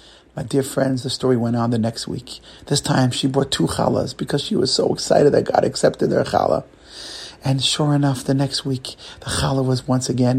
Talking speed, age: 215 wpm, 40-59